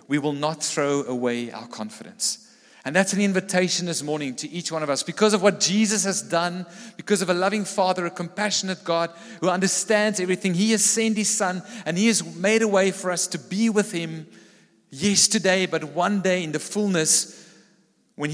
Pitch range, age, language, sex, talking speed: 150-210 Hz, 40-59, English, male, 195 wpm